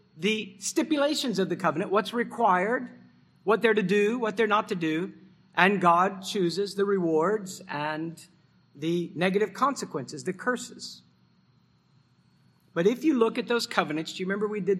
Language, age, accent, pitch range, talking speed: English, 50-69, American, 155-210 Hz, 160 wpm